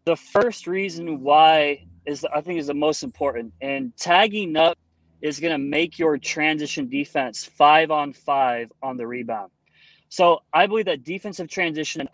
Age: 20-39